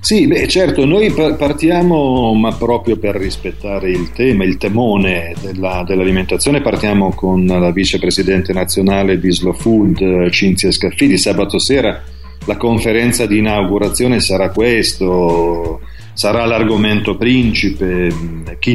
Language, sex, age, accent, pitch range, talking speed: Italian, male, 40-59, native, 95-110 Hz, 120 wpm